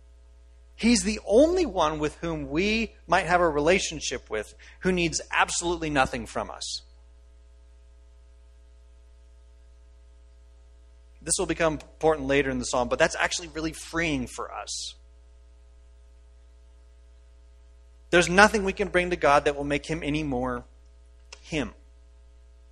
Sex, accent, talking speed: male, American, 125 wpm